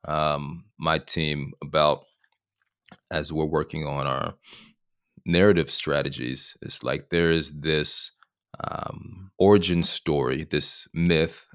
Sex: male